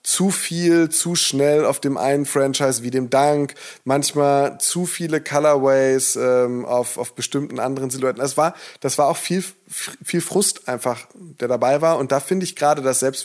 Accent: German